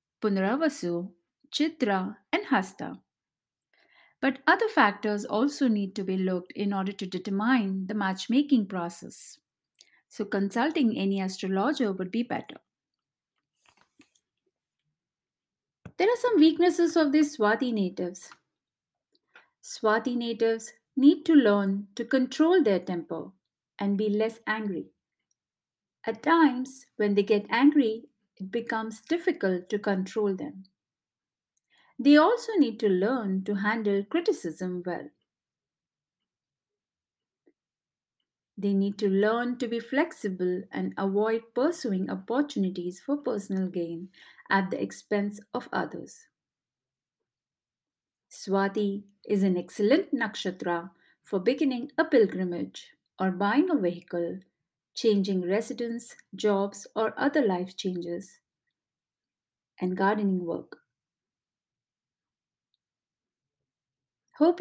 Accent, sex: Indian, female